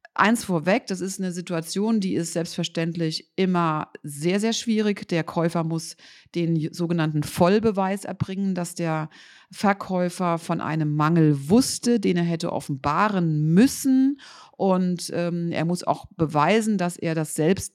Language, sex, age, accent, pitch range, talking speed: German, female, 40-59, German, 160-190 Hz, 140 wpm